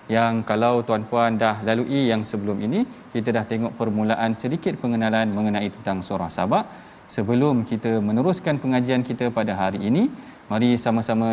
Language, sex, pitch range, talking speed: Malayalam, male, 110-135 Hz, 150 wpm